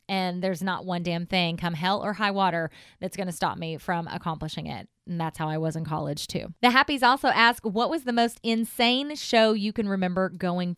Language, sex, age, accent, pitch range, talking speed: English, female, 20-39, American, 170-210 Hz, 230 wpm